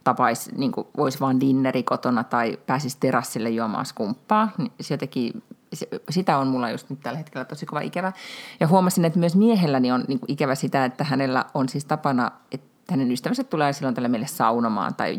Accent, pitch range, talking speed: native, 130-190 Hz, 185 wpm